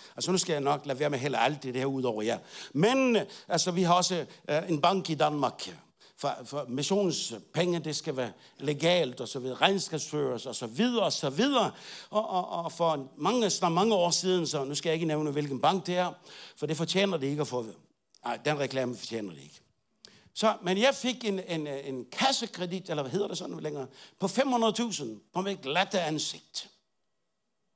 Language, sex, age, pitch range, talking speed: Danish, male, 60-79, 150-205 Hz, 210 wpm